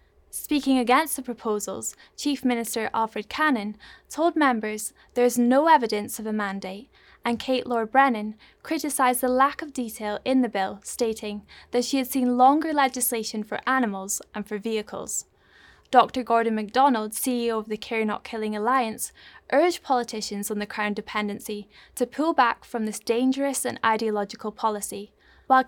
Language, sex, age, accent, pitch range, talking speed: English, female, 10-29, British, 215-260 Hz, 155 wpm